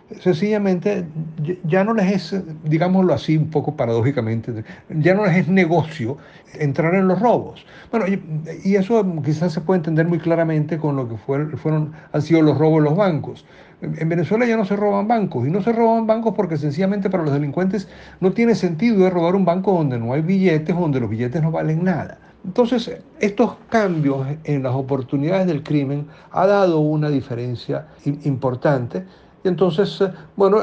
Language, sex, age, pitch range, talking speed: Spanish, male, 60-79, 140-185 Hz, 170 wpm